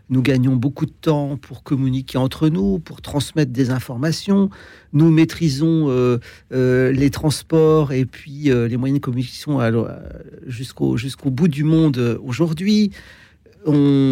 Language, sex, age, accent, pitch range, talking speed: French, male, 50-69, French, 125-160 Hz, 145 wpm